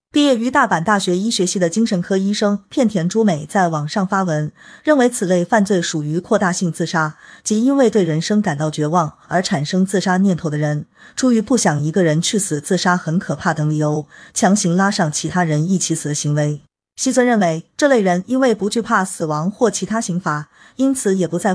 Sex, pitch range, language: female, 165-225 Hz, Chinese